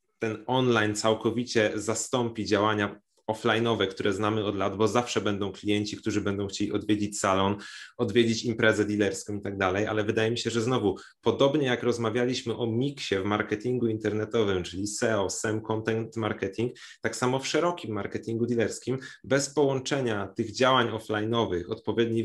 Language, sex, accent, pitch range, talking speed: Polish, male, native, 110-130 Hz, 150 wpm